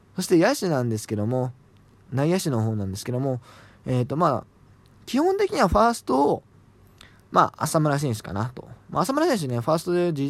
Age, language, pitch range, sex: 20-39, Japanese, 105-165 Hz, male